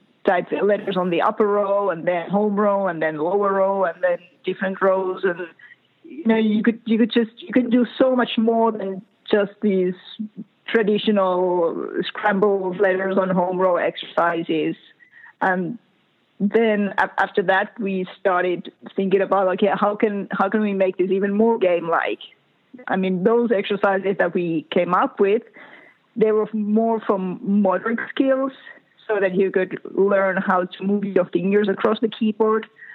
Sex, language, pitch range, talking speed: female, English, 190-220 Hz, 165 wpm